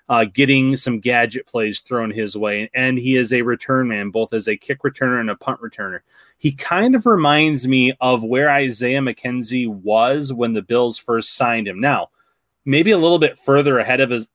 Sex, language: male, English